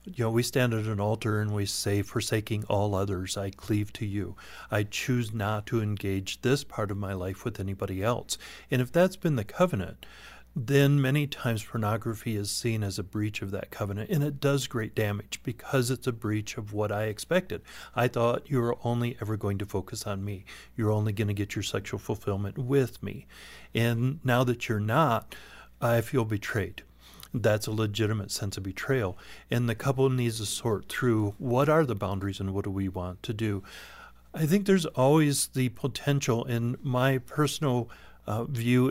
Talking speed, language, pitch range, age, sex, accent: 195 wpm, English, 105-130 Hz, 40-59, male, American